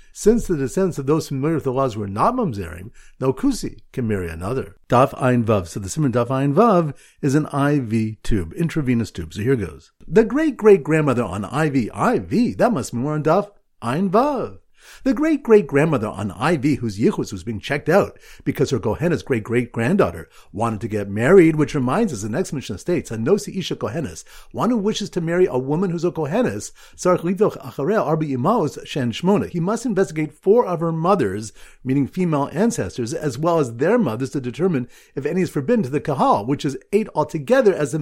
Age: 50-69